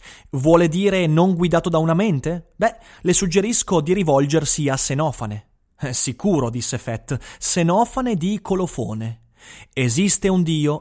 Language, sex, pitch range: Italian, male, 125-190 Hz